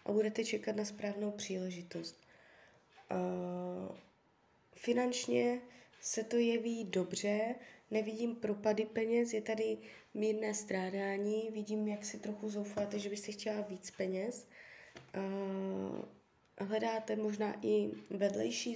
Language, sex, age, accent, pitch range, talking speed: Czech, female, 20-39, native, 195-225 Hz, 100 wpm